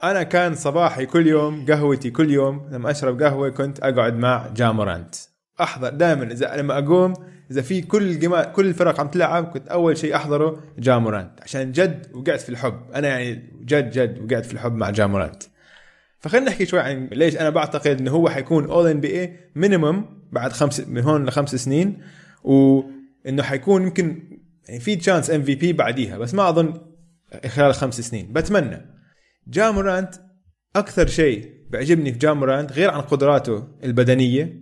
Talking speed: 160 wpm